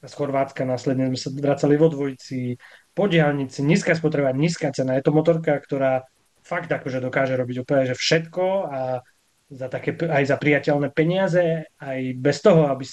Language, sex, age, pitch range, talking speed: Slovak, male, 20-39, 130-150 Hz, 160 wpm